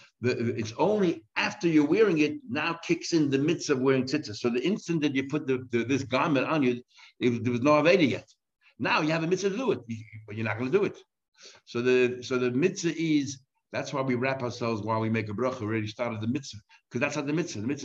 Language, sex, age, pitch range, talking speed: English, male, 60-79, 110-135 Hz, 250 wpm